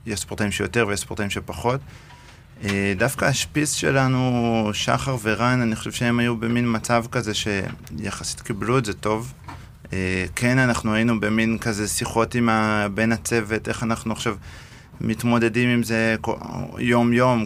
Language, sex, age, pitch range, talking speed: Hebrew, male, 30-49, 105-120 Hz, 135 wpm